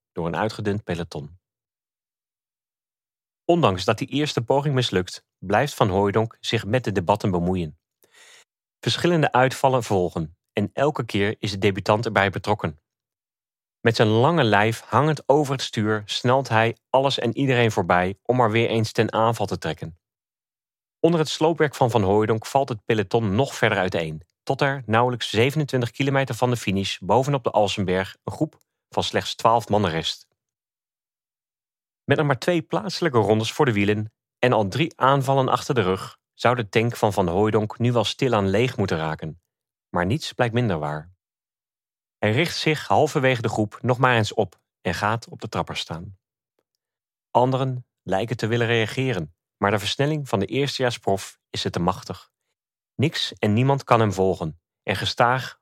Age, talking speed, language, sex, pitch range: 40-59, 165 wpm, Dutch, male, 100-130 Hz